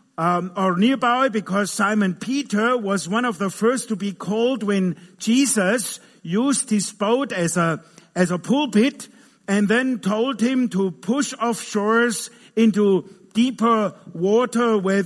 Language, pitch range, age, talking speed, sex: English, 175-230 Hz, 50-69, 140 wpm, male